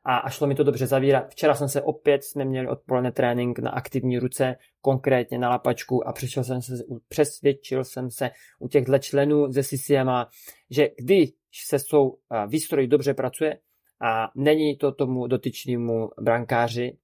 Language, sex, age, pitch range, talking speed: Czech, male, 20-39, 125-145 Hz, 155 wpm